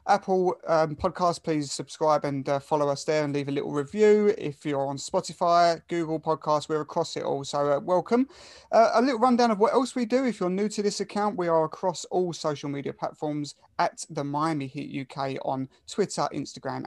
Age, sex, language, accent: 30-49, male, English, British